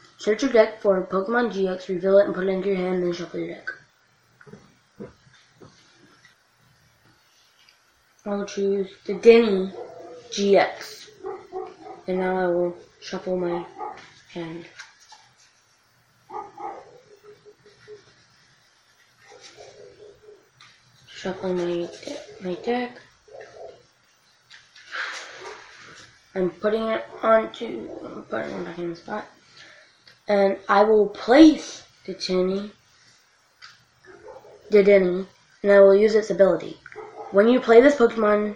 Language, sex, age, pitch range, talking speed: English, female, 20-39, 180-225 Hz, 95 wpm